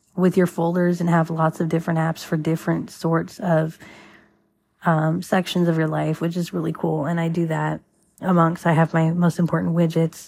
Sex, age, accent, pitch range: female, 30-49, American, 160-180 Hz